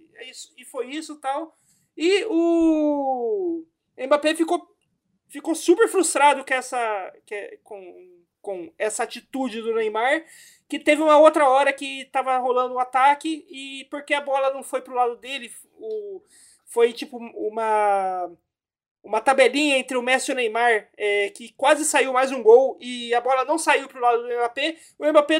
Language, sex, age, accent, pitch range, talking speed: Portuguese, male, 20-39, Brazilian, 250-325 Hz, 170 wpm